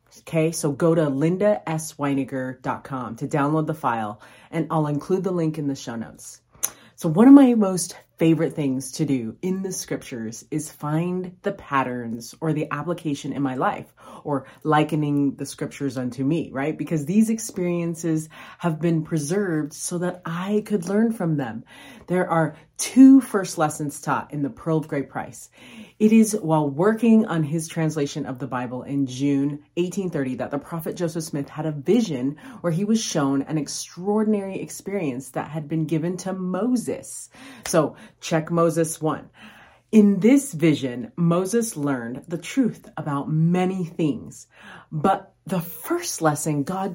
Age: 30-49